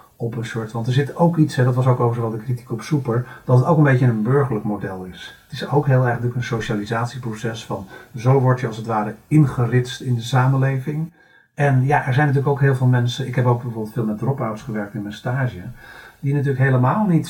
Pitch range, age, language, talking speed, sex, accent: 120-140 Hz, 50-69, Dutch, 235 wpm, male, Dutch